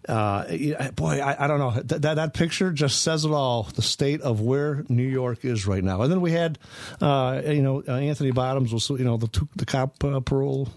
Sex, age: male, 50-69